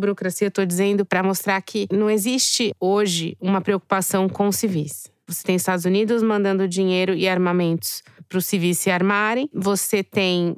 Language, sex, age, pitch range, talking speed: Portuguese, female, 20-39, 180-205 Hz, 165 wpm